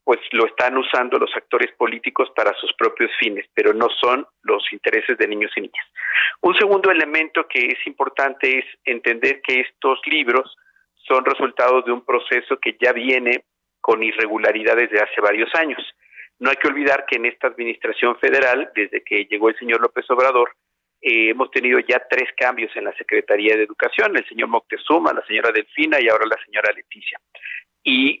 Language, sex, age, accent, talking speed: Spanish, male, 50-69, Mexican, 180 wpm